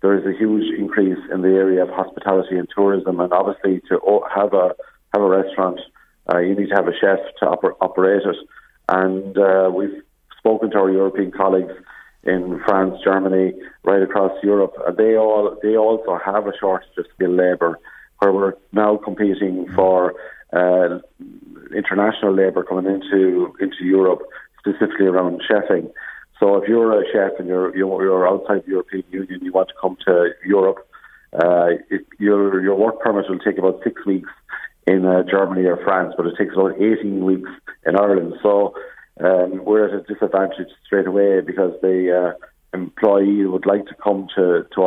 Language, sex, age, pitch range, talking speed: English, male, 50-69, 95-100 Hz, 175 wpm